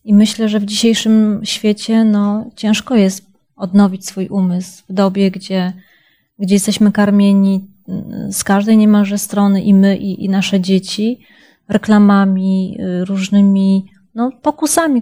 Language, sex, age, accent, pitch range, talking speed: Polish, female, 30-49, native, 195-225 Hz, 120 wpm